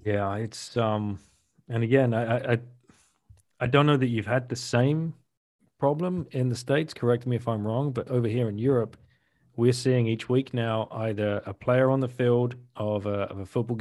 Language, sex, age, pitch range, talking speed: English, male, 30-49, 105-125 Hz, 195 wpm